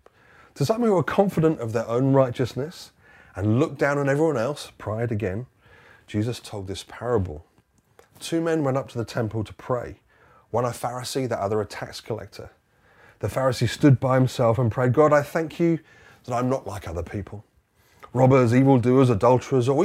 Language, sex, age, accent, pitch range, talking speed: English, male, 30-49, British, 100-130 Hz, 180 wpm